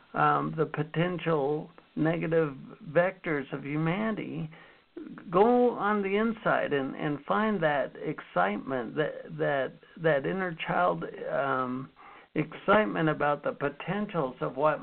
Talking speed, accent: 115 wpm, American